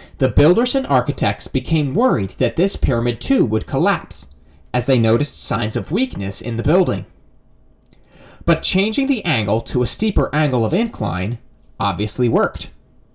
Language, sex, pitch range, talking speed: English, male, 110-180 Hz, 150 wpm